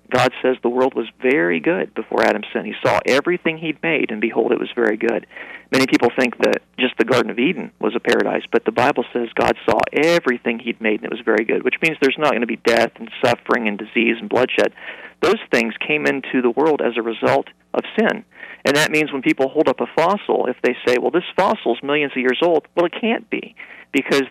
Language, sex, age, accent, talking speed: English, male, 40-59, American, 235 wpm